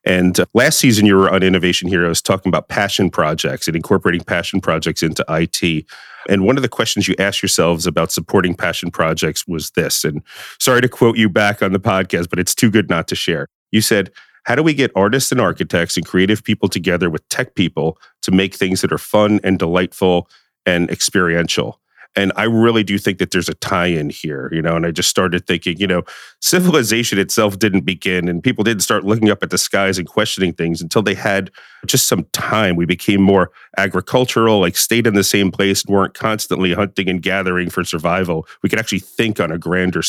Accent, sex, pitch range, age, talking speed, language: American, male, 90-105 Hz, 40-59, 210 wpm, English